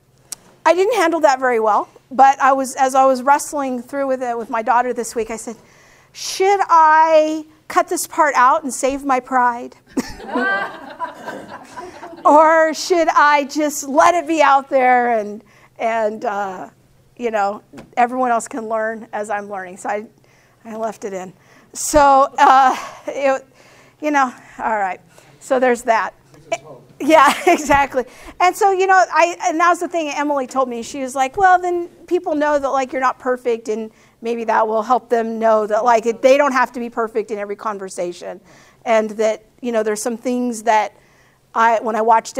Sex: female